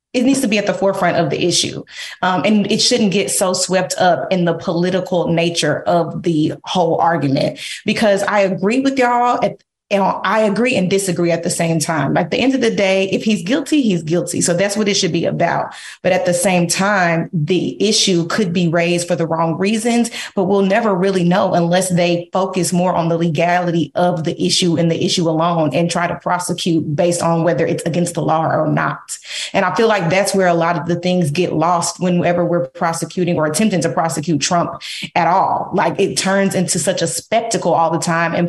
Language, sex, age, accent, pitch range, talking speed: English, female, 30-49, American, 170-215 Hz, 215 wpm